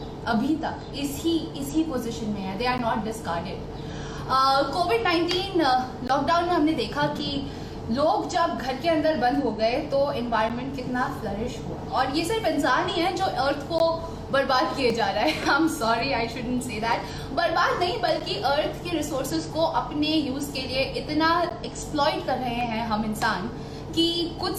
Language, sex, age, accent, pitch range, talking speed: Hindi, female, 20-39, native, 230-305 Hz, 175 wpm